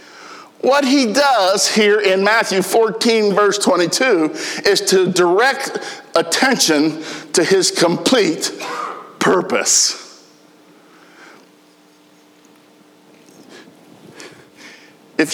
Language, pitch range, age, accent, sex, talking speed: English, 145-215 Hz, 50-69, American, male, 70 wpm